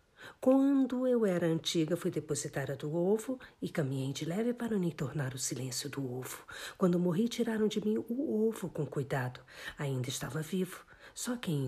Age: 50-69